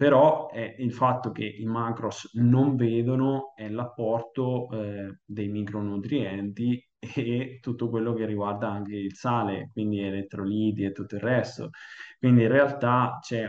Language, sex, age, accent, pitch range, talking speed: Italian, male, 20-39, native, 105-120 Hz, 140 wpm